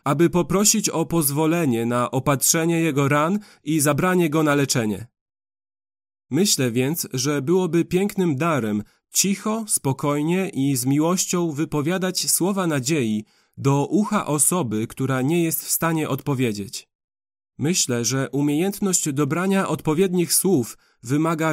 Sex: male